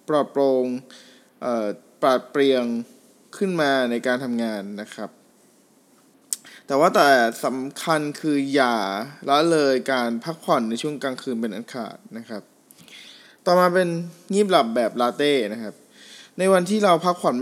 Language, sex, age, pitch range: Thai, male, 20-39, 125-170 Hz